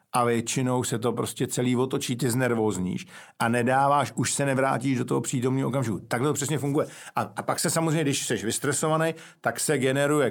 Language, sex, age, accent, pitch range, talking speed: Czech, male, 50-69, native, 120-145 Hz, 190 wpm